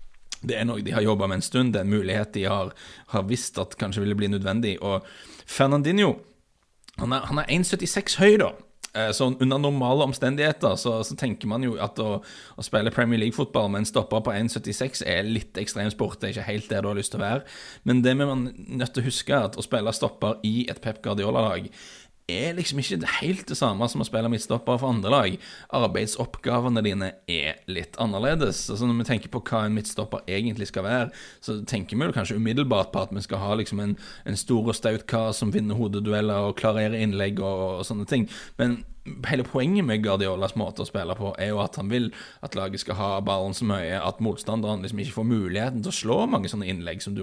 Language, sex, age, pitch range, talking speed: English, male, 20-39, 100-125 Hz, 210 wpm